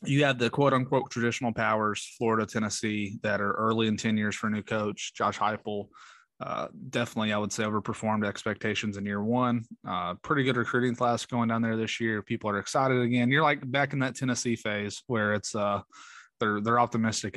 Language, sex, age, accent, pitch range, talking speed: English, male, 20-39, American, 110-135 Hz, 200 wpm